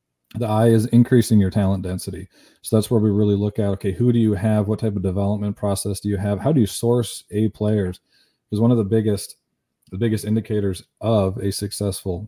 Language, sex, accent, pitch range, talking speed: English, male, American, 100-115 Hz, 215 wpm